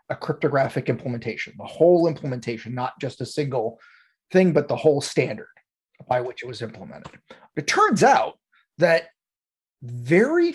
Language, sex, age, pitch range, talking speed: English, male, 30-49, 130-170 Hz, 140 wpm